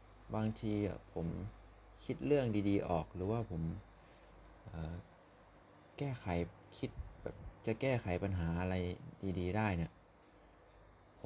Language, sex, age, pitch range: Thai, male, 20-39, 90-110 Hz